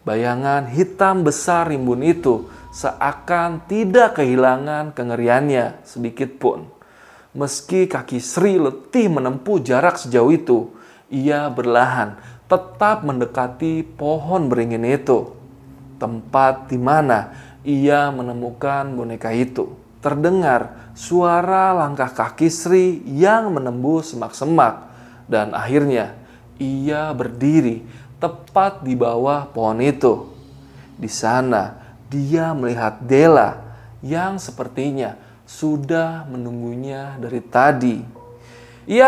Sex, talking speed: male, 90 wpm